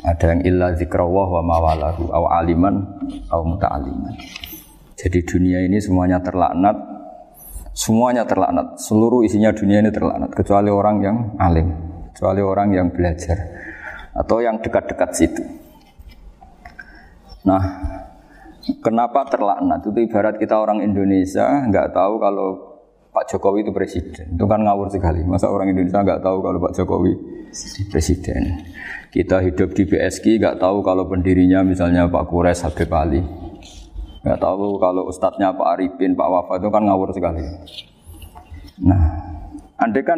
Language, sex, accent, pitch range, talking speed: Indonesian, male, native, 90-105 Hz, 135 wpm